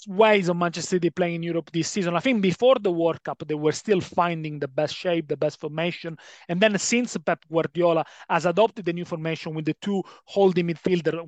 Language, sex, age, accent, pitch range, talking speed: English, male, 30-49, Italian, 170-215 Hz, 215 wpm